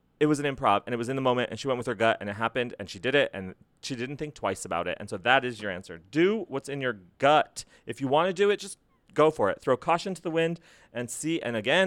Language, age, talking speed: English, 30-49, 300 wpm